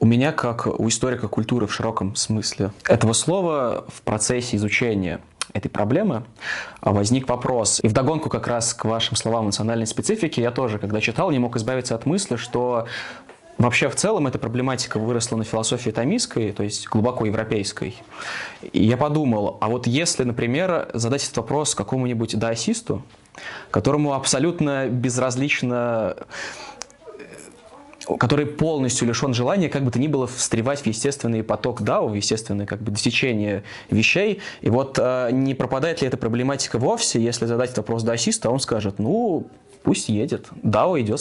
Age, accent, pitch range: 20-39, native, 110-135 Hz